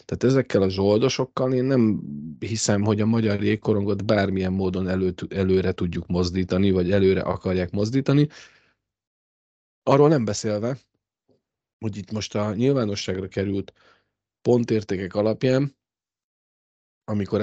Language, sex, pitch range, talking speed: Hungarian, male, 95-110 Hz, 115 wpm